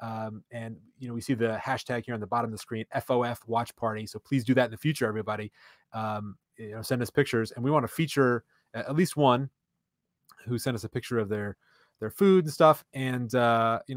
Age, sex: 20-39, male